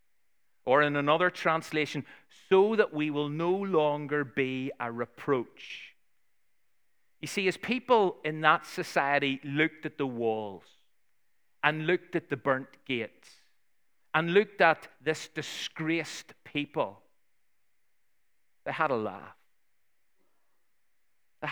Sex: male